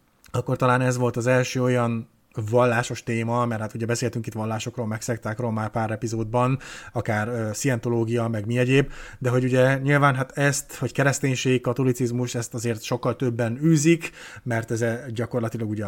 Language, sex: Hungarian, male